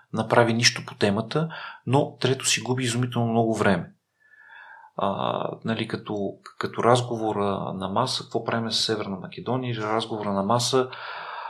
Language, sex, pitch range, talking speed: Bulgarian, male, 110-125 Hz, 135 wpm